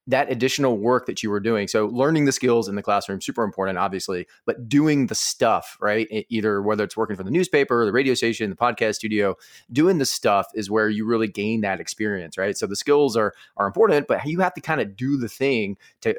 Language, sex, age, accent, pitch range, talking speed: English, male, 30-49, American, 105-130 Hz, 235 wpm